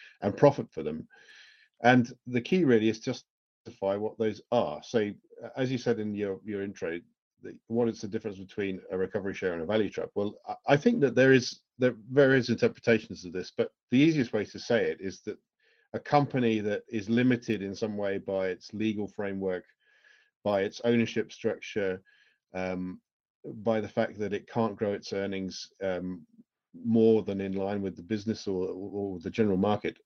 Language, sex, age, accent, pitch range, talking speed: English, male, 40-59, British, 100-125 Hz, 190 wpm